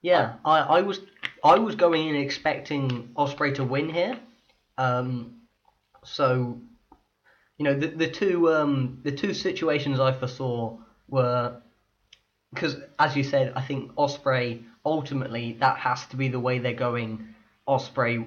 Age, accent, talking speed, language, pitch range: 20-39, British, 145 wpm, English, 120-140 Hz